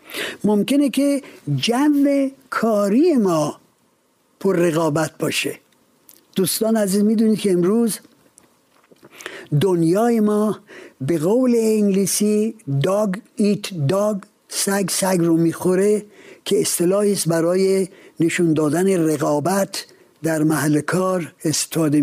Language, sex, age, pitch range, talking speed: Persian, male, 60-79, 165-215 Hz, 95 wpm